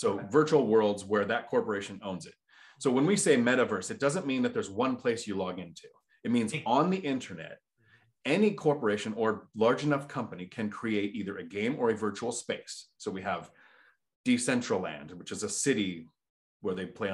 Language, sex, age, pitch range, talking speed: English, male, 30-49, 100-155 Hz, 190 wpm